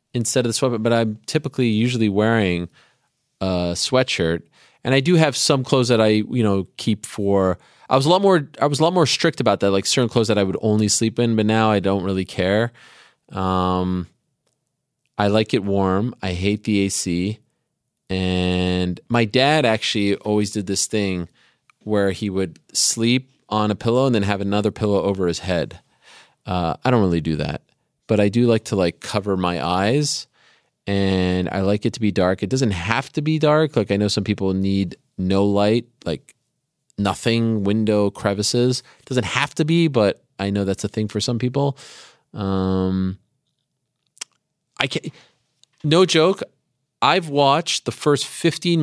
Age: 30-49